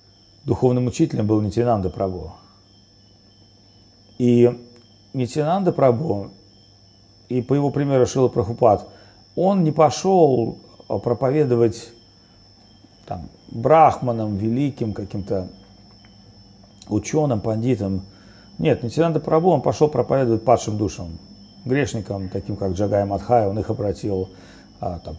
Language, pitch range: Russian, 100-125 Hz